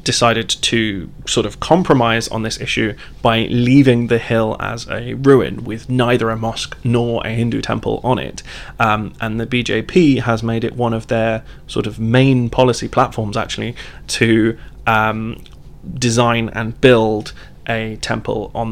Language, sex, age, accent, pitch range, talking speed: English, male, 30-49, British, 115-130 Hz, 155 wpm